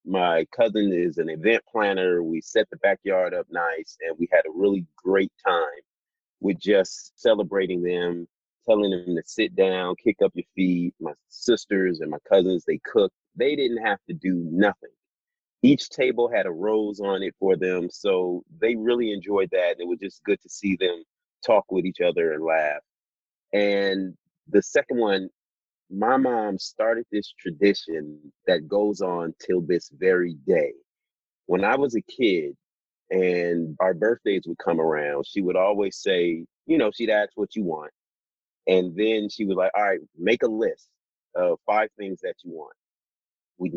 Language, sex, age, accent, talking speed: English, male, 30-49, American, 175 wpm